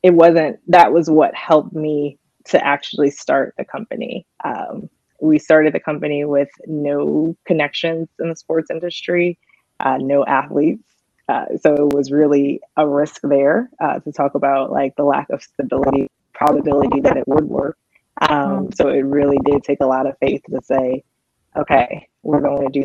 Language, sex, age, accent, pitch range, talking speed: English, female, 20-39, American, 140-160 Hz, 175 wpm